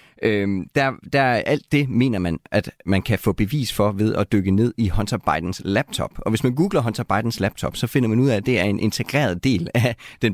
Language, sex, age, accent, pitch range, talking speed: Danish, male, 30-49, native, 100-125 Hz, 240 wpm